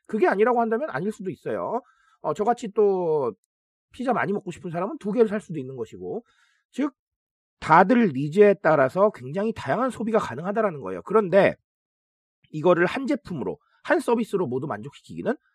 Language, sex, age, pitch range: Korean, male, 40-59, 135-220 Hz